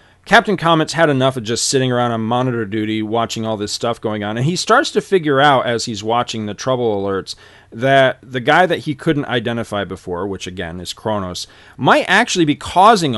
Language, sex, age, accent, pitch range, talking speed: English, male, 40-59, American, 105-150 Hz, 205 wpm